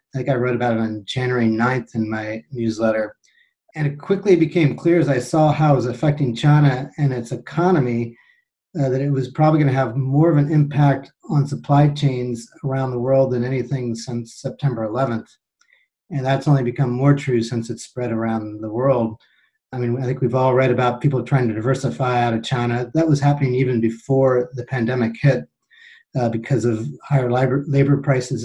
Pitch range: 120-145 Hz